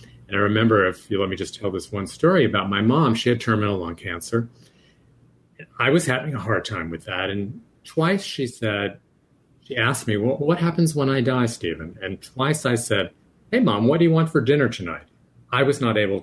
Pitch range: 90-125 Hz